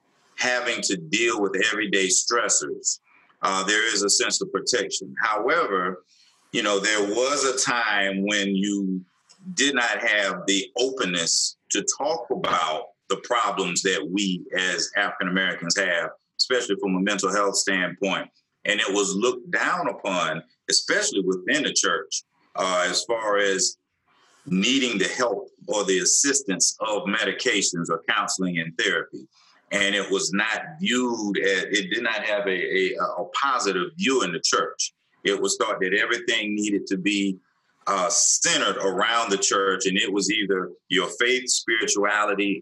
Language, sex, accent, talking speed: English, male, American, 150 wpm